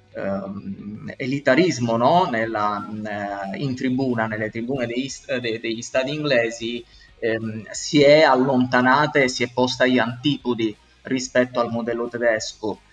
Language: Italian